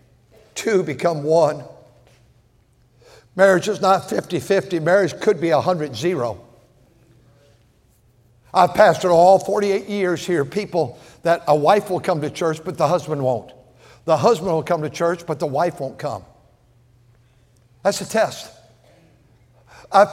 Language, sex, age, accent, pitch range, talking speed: English, male, 60-79, American, 130-210 Hz, 130 wpm